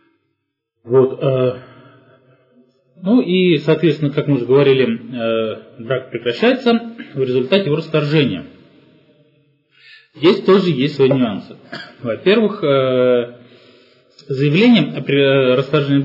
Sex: male